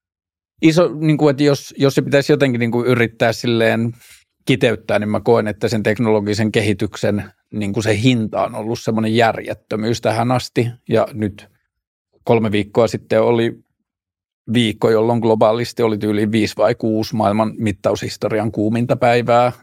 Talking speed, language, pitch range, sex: 140 wpm, Finnish, 110-120 Hz, male